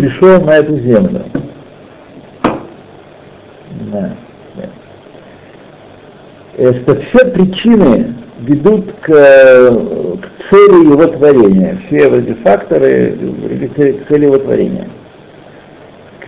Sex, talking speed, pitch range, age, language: male, 85 wpm, 120-180 Hz, 60-79, Russian